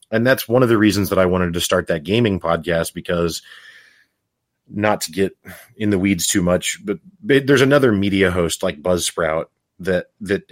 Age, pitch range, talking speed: 30-49, 85-100 Hz, 185 wpm